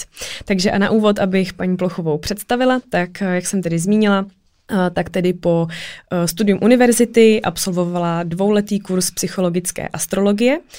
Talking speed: 130 wpm